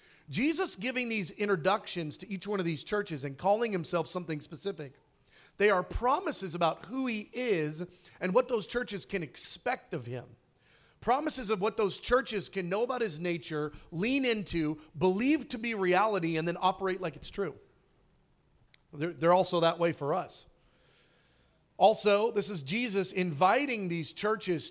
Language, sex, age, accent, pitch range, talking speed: English, male, 40-59, American, 155-205 Hz, 160 wpm